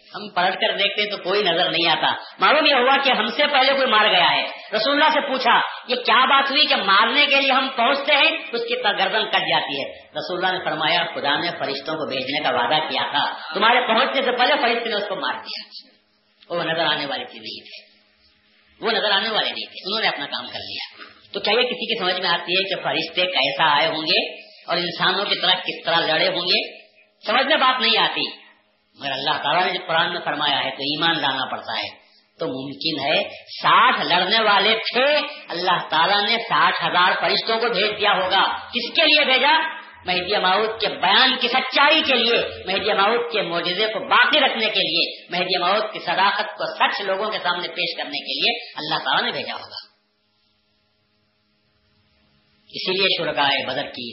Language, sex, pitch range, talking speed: Urdu, female, 165-255 Hz, 200 wpm